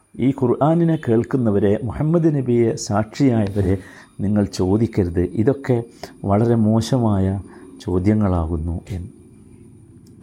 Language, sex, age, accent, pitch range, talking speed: Malayalam, male, 50-69, native, 115-155 Hz, 75 wpm